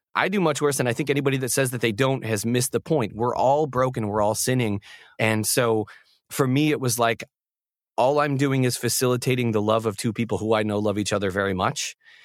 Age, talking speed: 30-49, 235 wpm